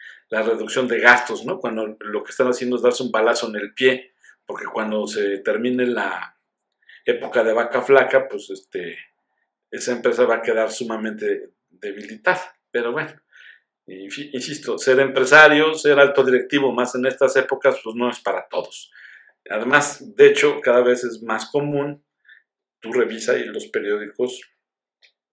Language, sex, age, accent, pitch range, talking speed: Spanish, male, 50-69, Mexican, 120-155 Hz, 155 wpm